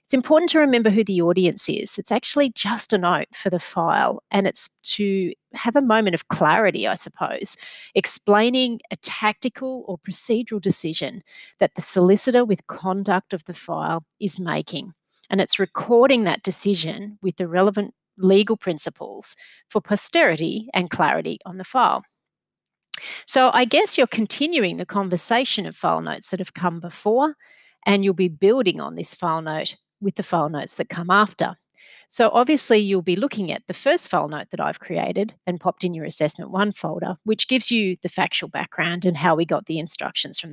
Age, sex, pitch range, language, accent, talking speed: 40-59, female, 180-230 Hz, English, Australian, 180 wpm